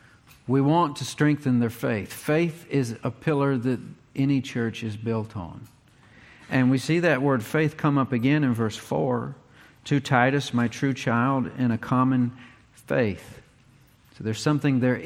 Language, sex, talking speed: English, male, 165 wpm